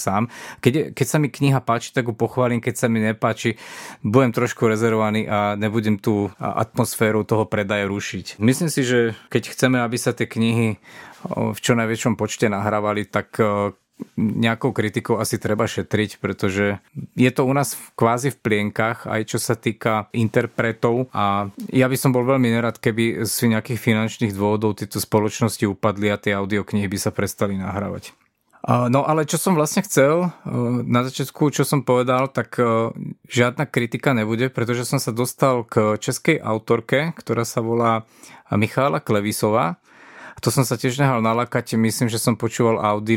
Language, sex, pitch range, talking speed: Slovak, male, 105-125 Hz, 165 wpm